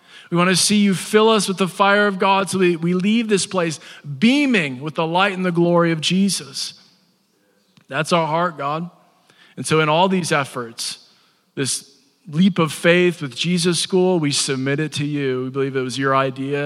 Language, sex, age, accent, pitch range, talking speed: English, male, 40-59, American, 125-175 Hz, 200 wpm